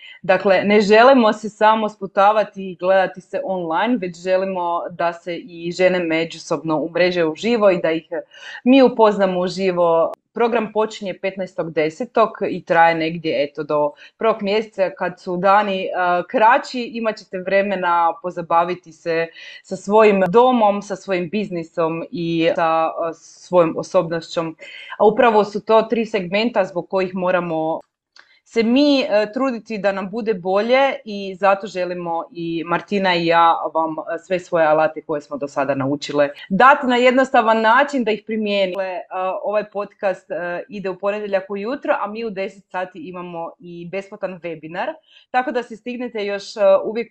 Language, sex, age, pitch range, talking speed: Croatian, female, 30-49, 170-215 Hz, 150 wpm